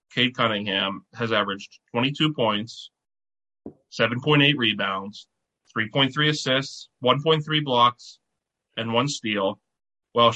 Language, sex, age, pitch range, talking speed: English, male, 20-39, 115-135 Hz, 95 wpm